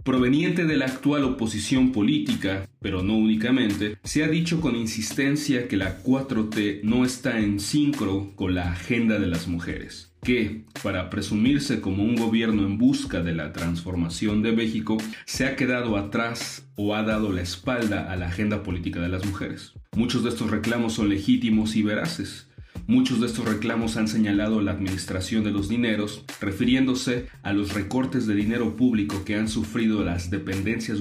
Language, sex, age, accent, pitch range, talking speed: Spanish, male, 40-59, Mexican, 100-120 Hz, 170 wpm